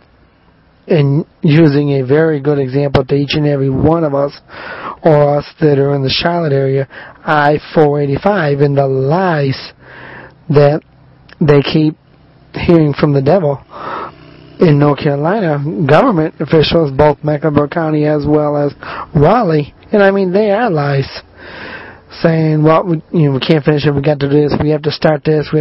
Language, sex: English, male